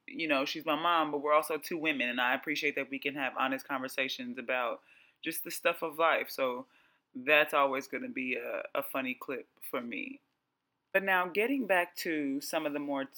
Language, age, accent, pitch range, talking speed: English, 20-39, American, 135-175 Hz, 205 wpm